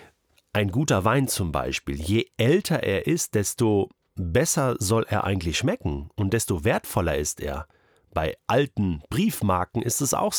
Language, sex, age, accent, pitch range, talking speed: German, male, 40-59, German, 95-145 Hz, 150 wpm